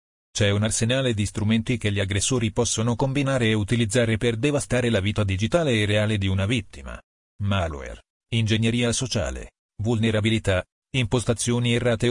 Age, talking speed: 40-59, 140 wpm